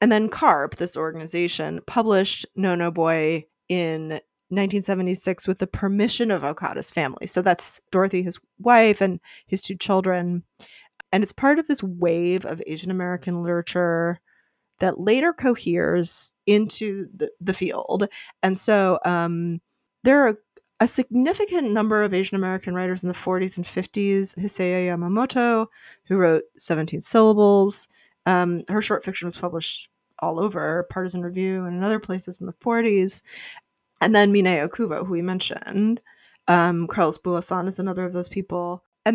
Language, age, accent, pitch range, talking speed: English, 30-49, American, 175-210 Hz, 150 wpm